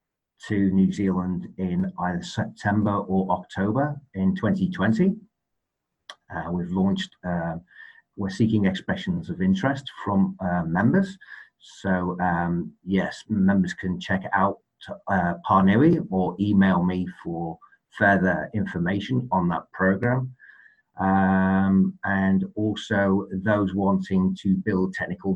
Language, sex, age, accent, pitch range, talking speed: English, male, 40-59, British, 90-105 Hz, 115 wpm